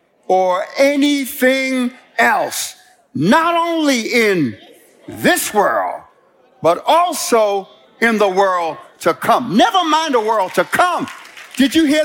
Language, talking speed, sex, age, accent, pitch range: English, 120 wpm, male, 50-69, American, 225-320 Hz